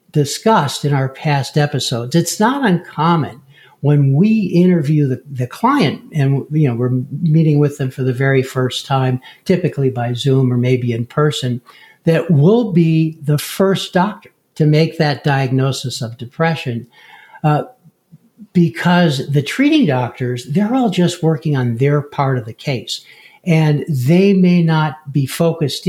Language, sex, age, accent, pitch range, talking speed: English, male, 60-79, American, 130-170 Hz, 155 wpm